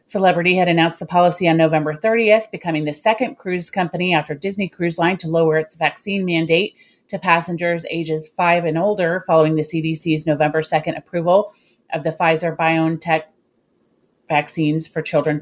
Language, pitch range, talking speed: English, 160-195 Hz, 155 wpm